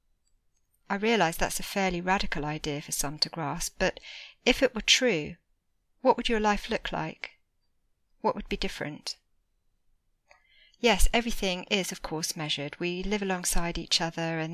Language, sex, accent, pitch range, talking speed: English, female, British, 165-200 Hz, 155 wpm